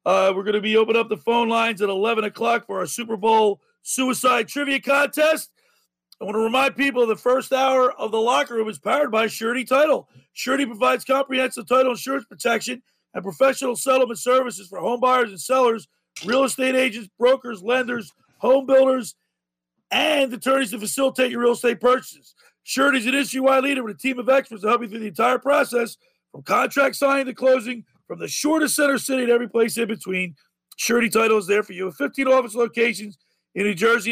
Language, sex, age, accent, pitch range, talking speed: English, male, 40-59, American, 220-260 Hz, 195 wpm